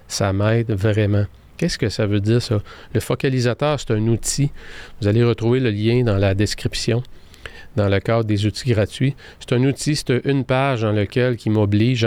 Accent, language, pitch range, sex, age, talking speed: Canadian, French, 105-120 Hz, male, 40-59, 190 wpm